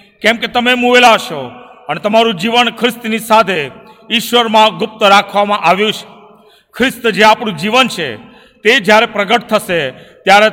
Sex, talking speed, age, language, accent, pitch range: male, 135 wpm, 50-69, Gujarati, native, 200-230 Hz